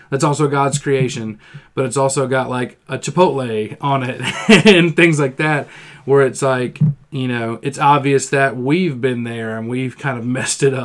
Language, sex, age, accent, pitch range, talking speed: English, male, 40-59, American, 120-140 Hz, 190 wpm